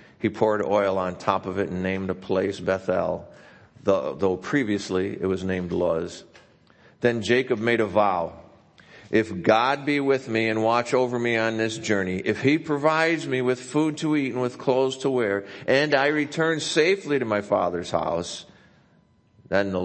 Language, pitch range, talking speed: English, 90-110 Hz, 175 wpm